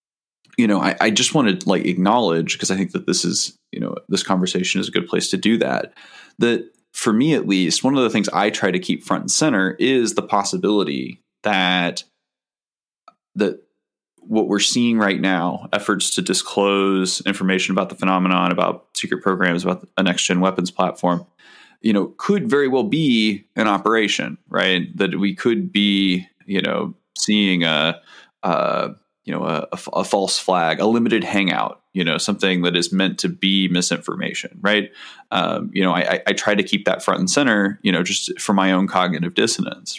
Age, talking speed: 20-39, 190 wpm